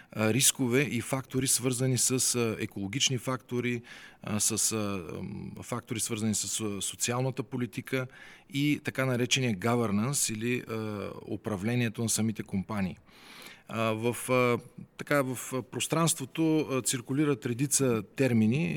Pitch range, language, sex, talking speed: 115-140 Hz, Bulgarian, male, 95 wpm